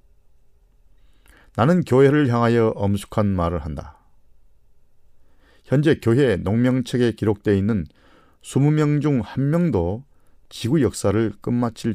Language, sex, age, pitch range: Korean, male, 40-59, 90-120 Hz